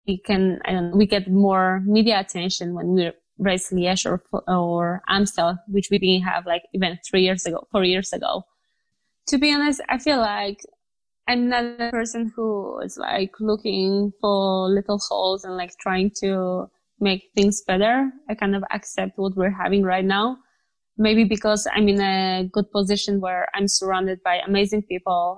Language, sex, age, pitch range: English, female, 20-39, 185-210 Hz